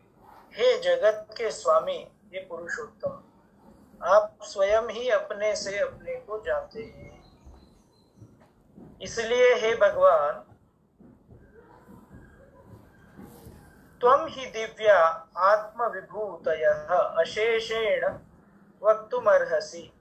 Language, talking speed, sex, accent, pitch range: Hindi, 75 wpm, male, native, 195-285 Hz